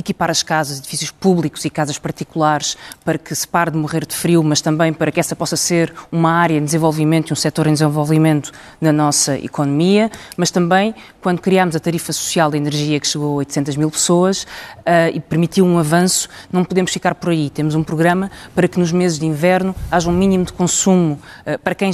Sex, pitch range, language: female, 160-220 Hz, Portuguese